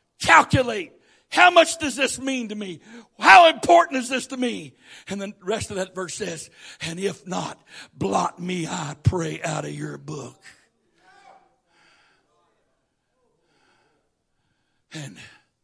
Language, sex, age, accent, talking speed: English, male, 60-79, American, 125 wpm